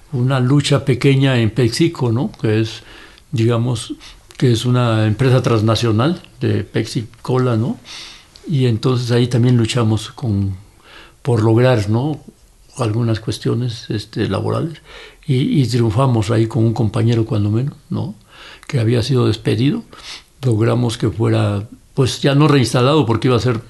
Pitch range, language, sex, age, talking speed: 110-135 Hz, Spanish, male, 60-79, 140 wpm